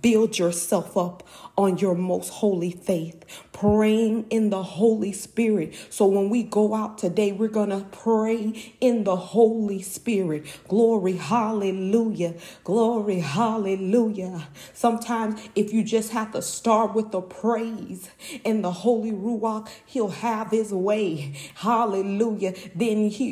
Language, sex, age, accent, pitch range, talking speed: English, female, 40-59, American, 195-230 Hz, 135 wpm